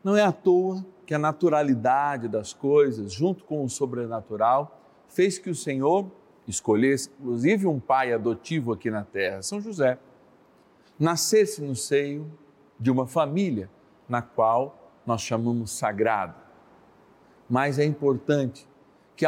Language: Portuguese